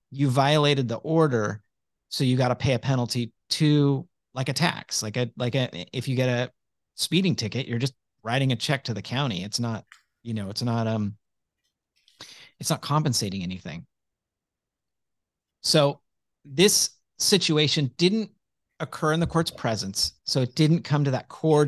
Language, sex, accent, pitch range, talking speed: English, male, American, 115-155 Hz, 165 wpm